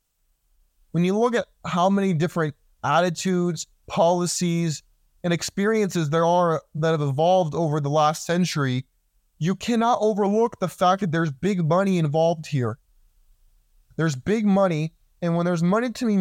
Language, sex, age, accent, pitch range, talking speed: English, male, 20-39, American, 145-185 Hz, 150 wpm